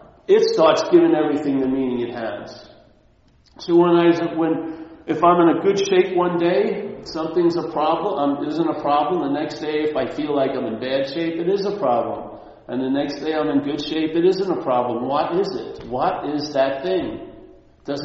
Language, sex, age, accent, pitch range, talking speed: English, male, 50-69, American, 140-225 Hz, 200 wpm